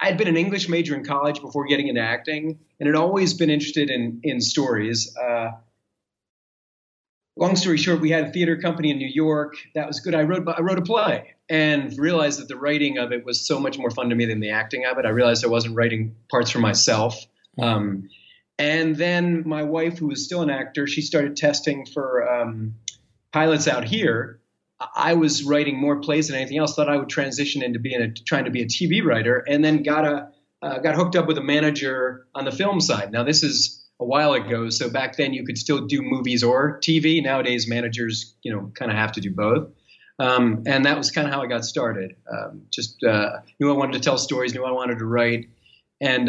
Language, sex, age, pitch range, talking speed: English, male, 30-49, 115-150 Hz, 225 wpm